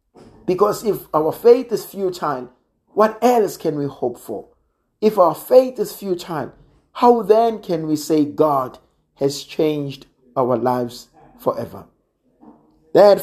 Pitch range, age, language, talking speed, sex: 135-190 Hz, 50-69, English, 130 wpm, male